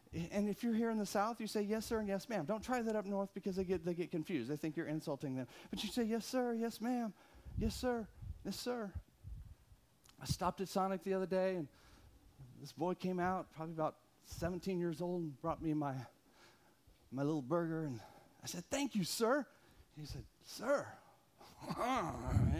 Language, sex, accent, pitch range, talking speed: English, male, American, 175-235 Hz, 200 wpm